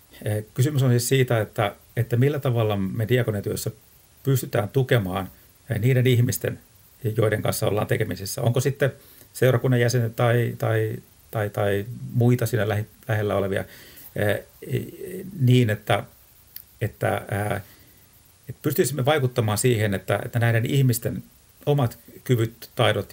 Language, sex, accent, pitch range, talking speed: Finnish, male, native, 100-125 Hz, 110 wpm